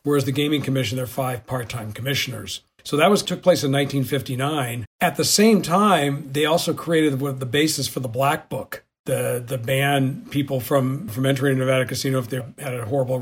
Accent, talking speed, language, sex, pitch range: American, 200 wpm, English, male, 130-155 Hz